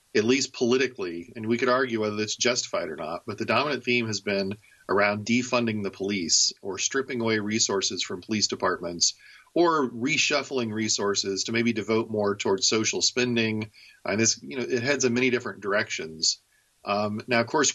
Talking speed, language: 180 wpm, English